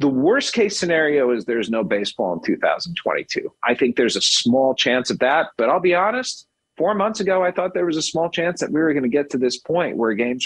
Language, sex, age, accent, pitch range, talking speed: English, male, 40-59, American, 115-185 Hz, 245 wpm